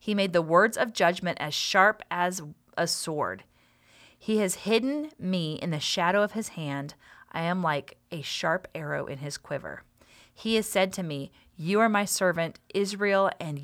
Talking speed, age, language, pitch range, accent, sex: 180 wpm, 30-49, English, 160-205 Hz, American, female